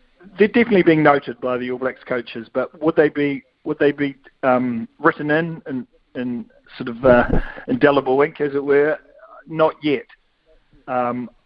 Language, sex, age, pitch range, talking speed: English, male, 50-69, 120-140 Hz, 170 wpm